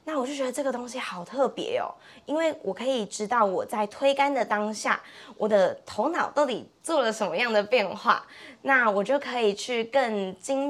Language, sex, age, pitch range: Chinese, female, 20-39, 195-250 Hz